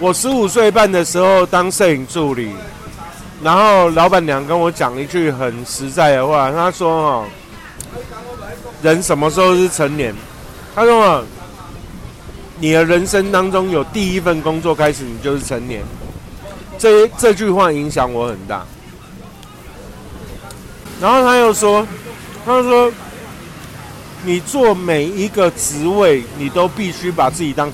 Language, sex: Chinese, male